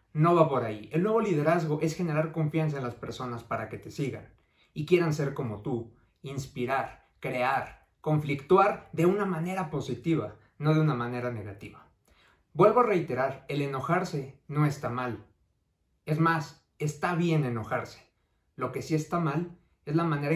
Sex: male